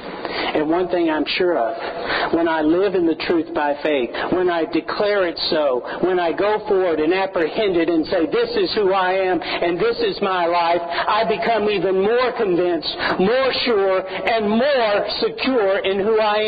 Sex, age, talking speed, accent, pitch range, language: male, 60-79, 185 wpm, American, 170-225 Hz, English